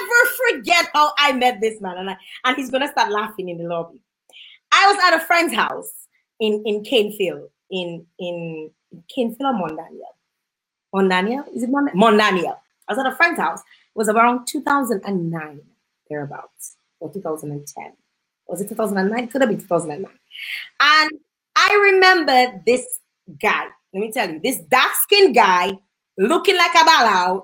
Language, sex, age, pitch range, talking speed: English, female, 20-39, 190-290 Hz, 155 wpm